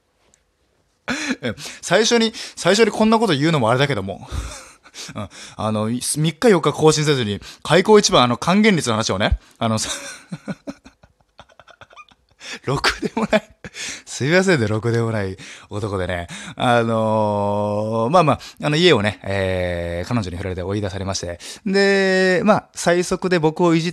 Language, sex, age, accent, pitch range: Japanese, male, 20-39, native, 100-155 Hz